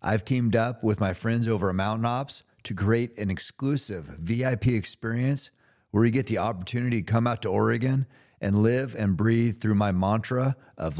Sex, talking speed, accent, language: male, 185 wpm, American, English